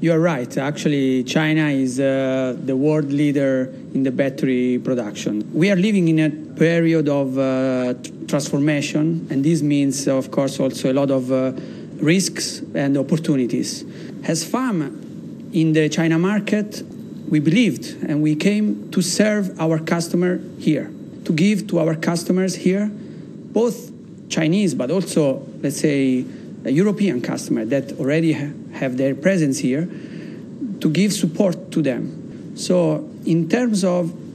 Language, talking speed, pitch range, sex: English, 145 wpm, 145-180 Hz, male